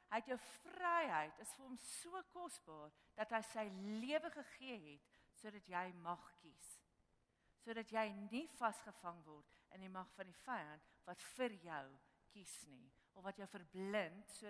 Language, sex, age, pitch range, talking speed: English, female, 50-69, 175-260 Hz, 170 wpm